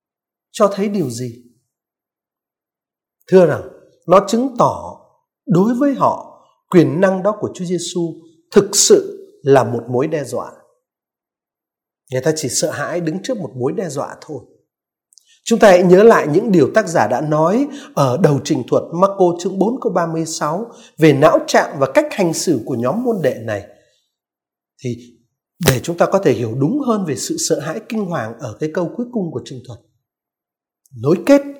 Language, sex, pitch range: Vietnamese, male, 165-250 Hz